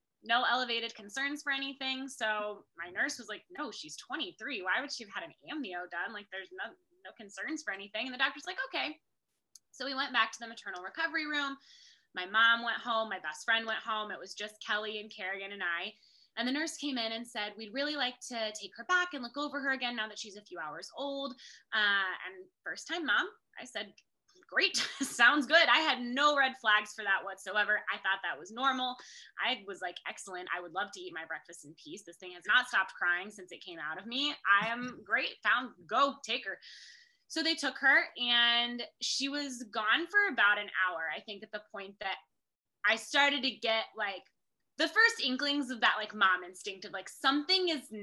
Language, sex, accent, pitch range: English, female, American, 200-280 Hz